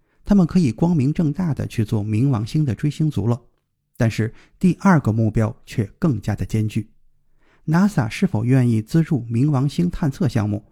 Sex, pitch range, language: male, 110-150 Hz, Chinese